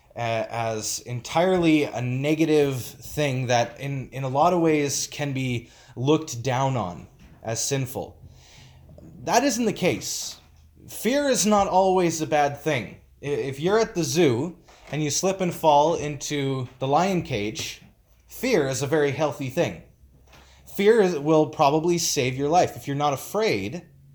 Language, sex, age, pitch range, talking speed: English, male, 20-39, 135-175 Hz, 150 wpm